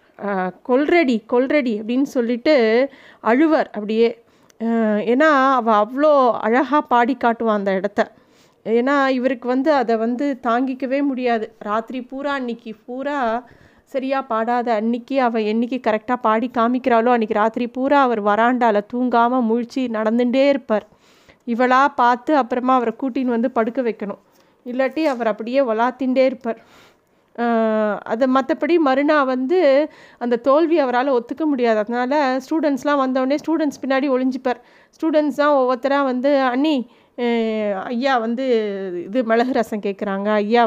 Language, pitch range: Tamil, 225-275 Hz